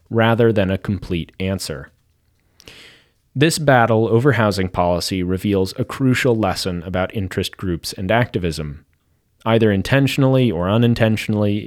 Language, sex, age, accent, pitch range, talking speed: English, male, 30-49, American, 85-115 Hz, 120 wpm